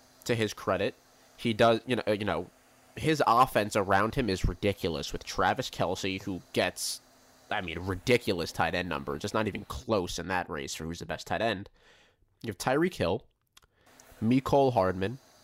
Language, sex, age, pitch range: English, male, 20-39, 95-125 Hz